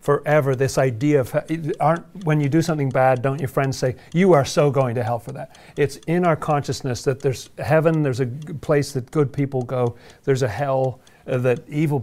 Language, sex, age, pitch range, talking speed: English, male, 40-59, 130-155 Hz, 200 wpm